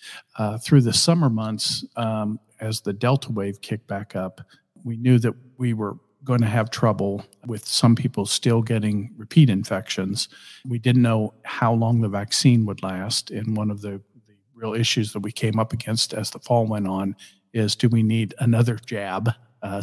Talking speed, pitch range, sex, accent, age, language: 190 wpm, 105-120 Hz, male, American, 50-69, English